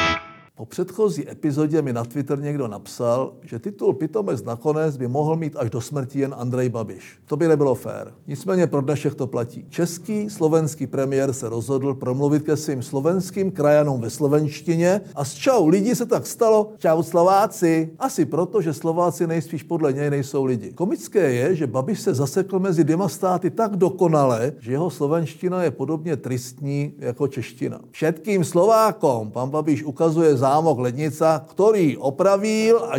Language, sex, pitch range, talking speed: Czech, male, 125-175 Hz, 160 wpm